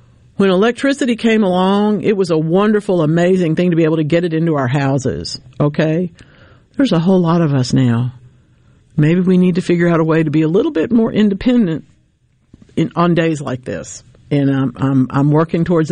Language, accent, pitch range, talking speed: English, American, 140-200 Hz, 200 wpm